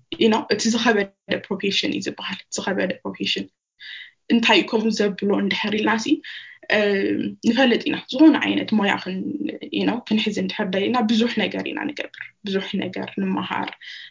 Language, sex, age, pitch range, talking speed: English, female, 10-29, 195-265 Hz, 70 wpm